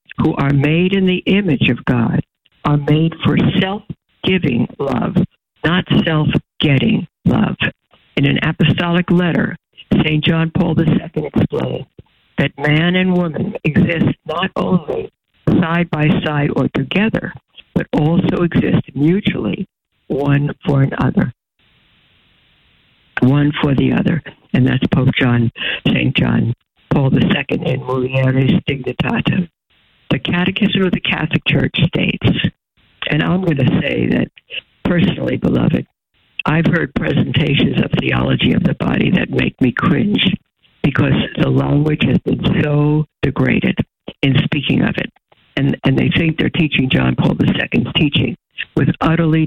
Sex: female